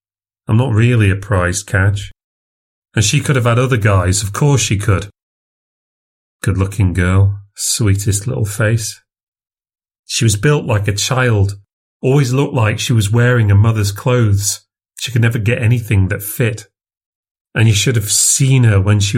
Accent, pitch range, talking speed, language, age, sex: British, 100-125 Hz, 165 wpm, English, 40-59, male